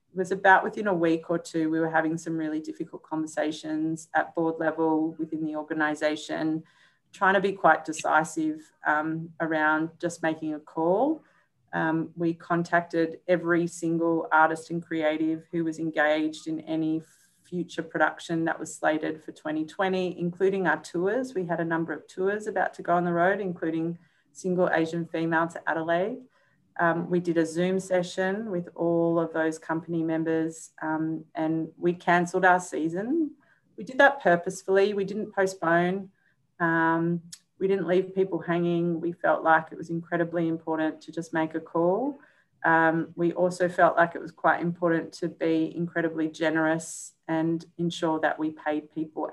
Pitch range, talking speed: 160-175 Hz, 165 wpm